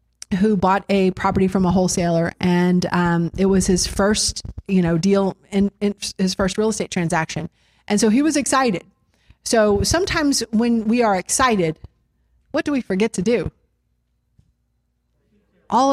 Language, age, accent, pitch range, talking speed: English, 40-59, American, 180-220 Hz, 155 wpm